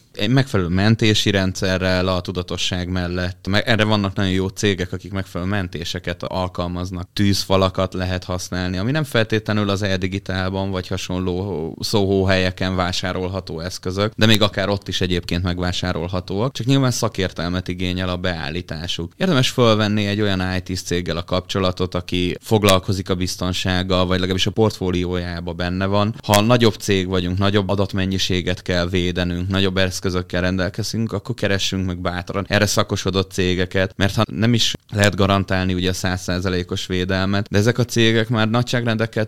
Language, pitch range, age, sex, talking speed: Hungarian, 90-105 Hz, 20-39, male, 145 wpm